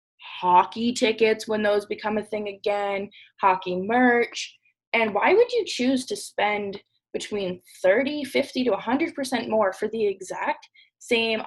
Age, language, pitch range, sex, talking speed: 20-39, English, 195-260 Hz, female, 140 wpm